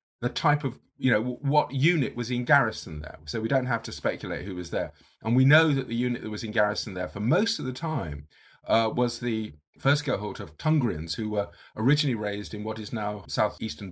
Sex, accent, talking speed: male, British, 225 wpm